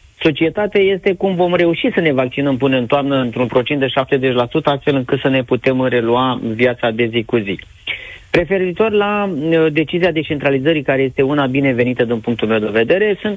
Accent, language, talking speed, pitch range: native, Romanian, 190 wpm, 120-150 Hz